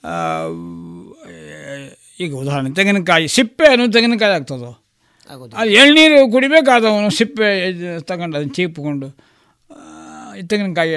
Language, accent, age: Kannada, native, 60-79